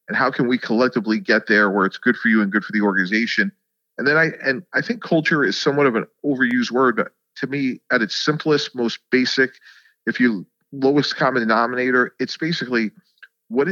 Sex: male